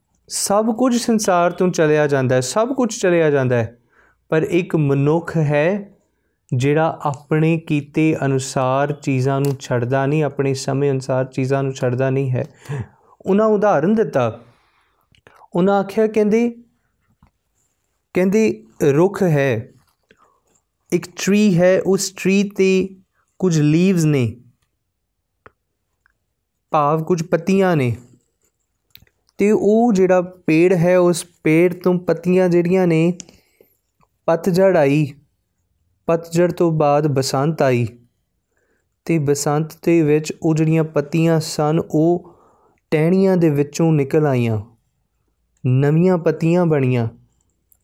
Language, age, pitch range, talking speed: Punjabi, 30-49, 135-180 Hz, 110 wpm